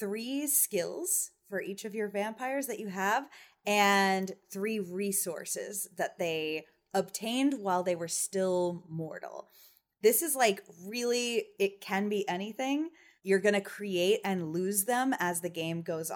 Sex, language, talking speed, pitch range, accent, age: female, English, 150 wpm, 170-215 Hz, American, 20-39